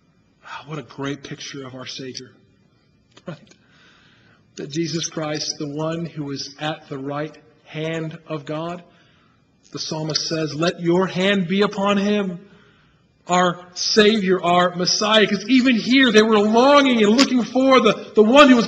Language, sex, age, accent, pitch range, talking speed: English, male, 40-59, American, 180-260 Hz, 155 wpm